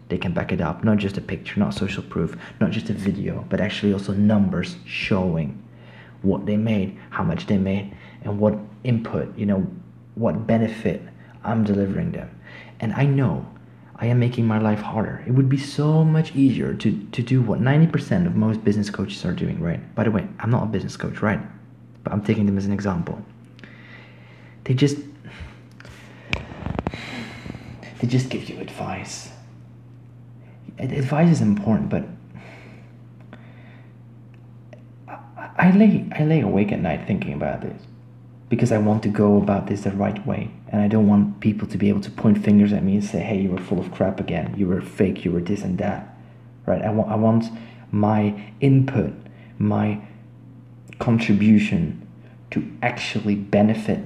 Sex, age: male, 30-49